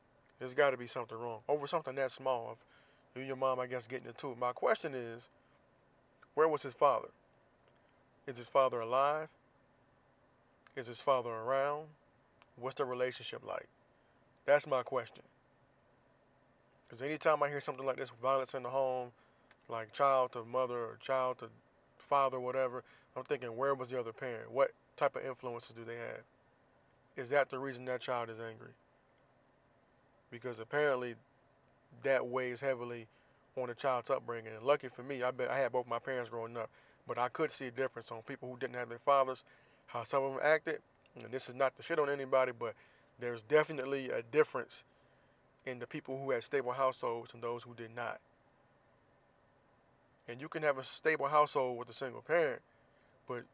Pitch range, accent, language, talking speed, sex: 120-140 Hz, American, English, 180 wpm, male